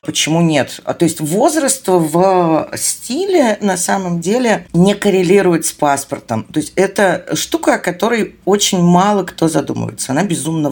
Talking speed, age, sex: 145 wpm, 50-69, female